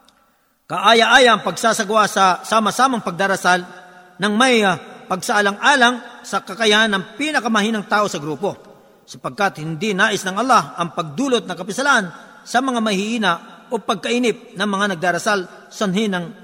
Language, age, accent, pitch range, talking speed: Filipino, 40-59, native, 190-240 Hz, 120 wpm